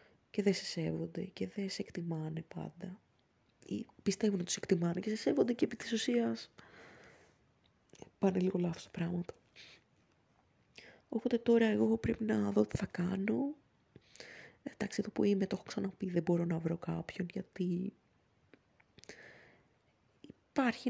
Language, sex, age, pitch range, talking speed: Greek, female, 20-39, 180-225 Hz, 140 wpm